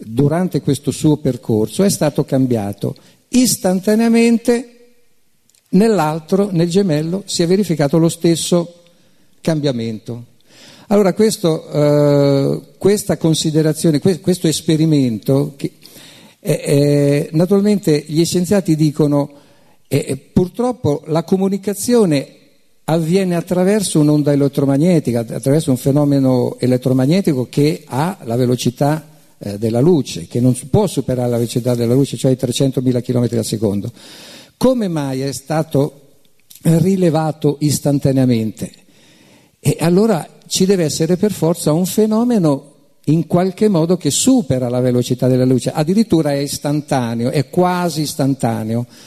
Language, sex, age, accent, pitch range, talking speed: Italian, male, 50-69, native, 135-180 Hz, 110 wpm